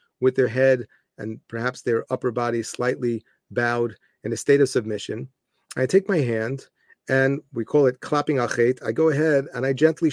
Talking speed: 185 wpm